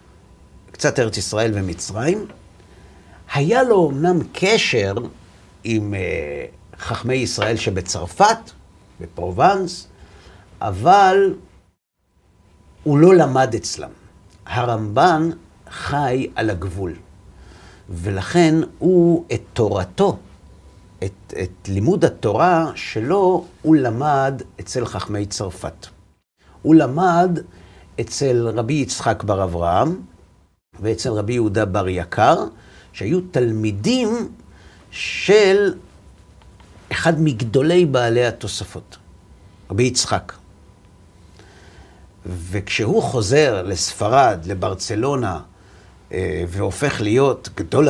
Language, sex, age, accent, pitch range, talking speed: Hebrew, male, 50-69, native, 95-150 Hz, 80 wpm